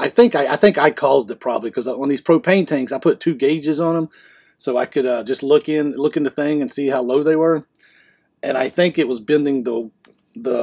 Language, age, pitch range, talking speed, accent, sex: English, 40-59, 130-155 Hz, 255 wpm, American, male